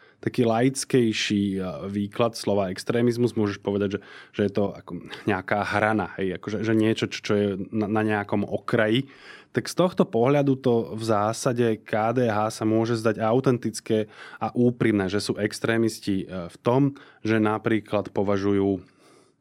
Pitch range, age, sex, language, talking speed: 105-120 Hz, 20-39, male, Slovak, 145 wpm